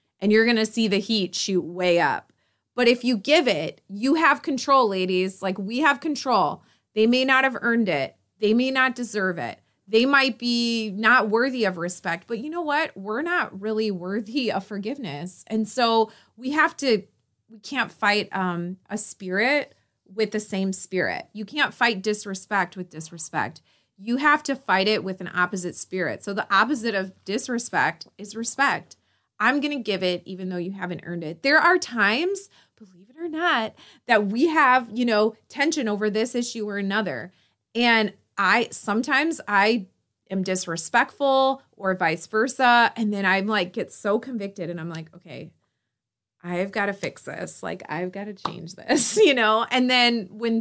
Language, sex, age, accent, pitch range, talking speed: English, female, 30-49, American, 190-245 Hz, 180 wpm